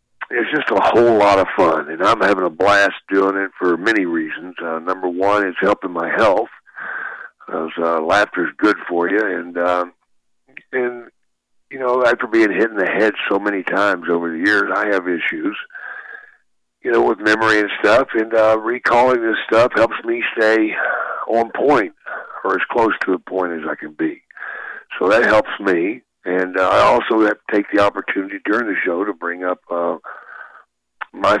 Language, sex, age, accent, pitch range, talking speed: English, male, 60-79, American, 85-130 Hz, 185 wpm